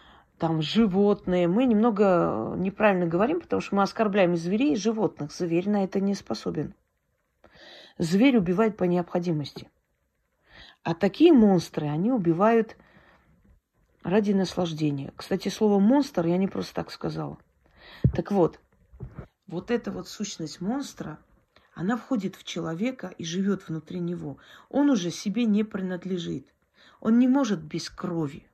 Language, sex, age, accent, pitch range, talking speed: Russian, female, 40-59, native, 170-220 Hz, 130 wpm